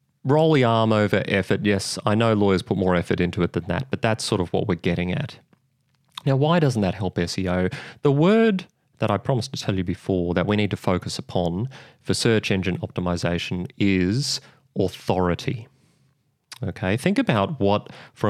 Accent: Australian